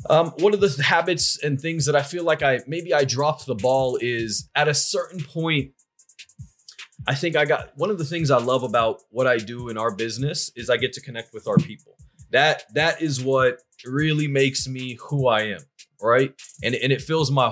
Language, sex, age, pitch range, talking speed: English, male, 20-39, 130-160 Hz, 220 wpm